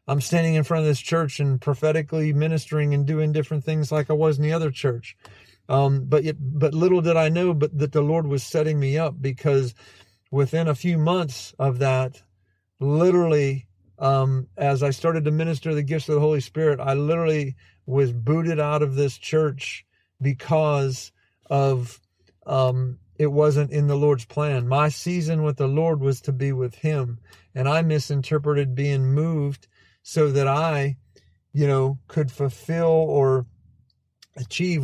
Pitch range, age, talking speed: 135-160 Hz, 50-69, 165 wpm